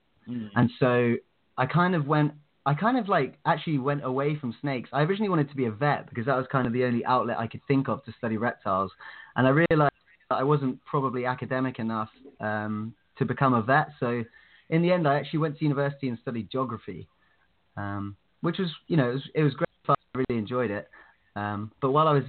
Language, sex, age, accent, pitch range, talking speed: English, male, 20-39, British, 115-145 Hz, 220 wpm